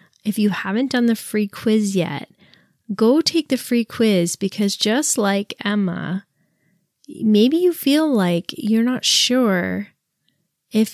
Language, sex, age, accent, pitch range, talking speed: English, female, 20-39, American, 185-230 Hz, 135 wpm